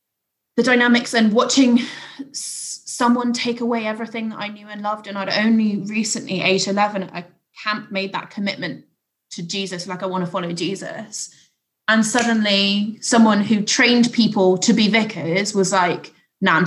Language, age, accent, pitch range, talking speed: English, 20-39, British, 195-235 Hz, 165 wpm